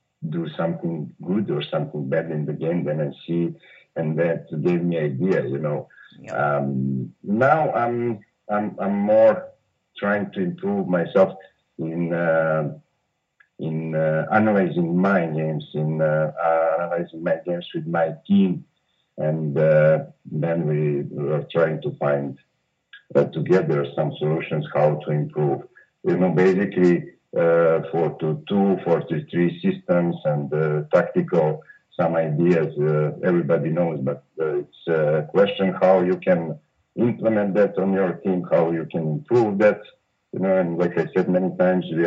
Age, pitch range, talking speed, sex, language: 50-69, 80-100 Hz, 150 wpm, male, English